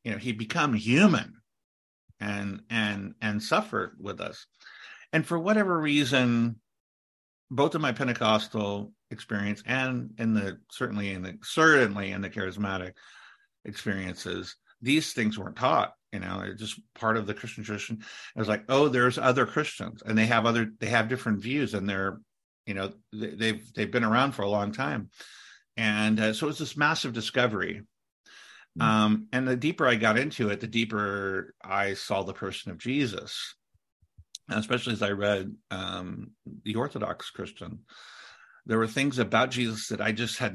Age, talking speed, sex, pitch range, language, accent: 50-69, 165 wpm, male, 100-120 Hz, English, American